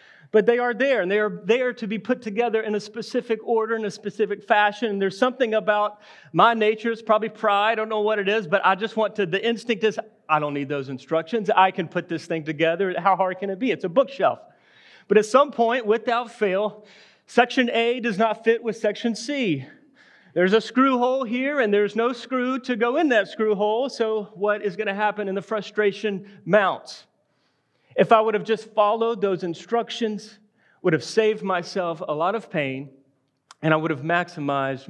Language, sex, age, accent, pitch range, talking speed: English, male, 40-59, American, 165-225 Hz, 210 wpm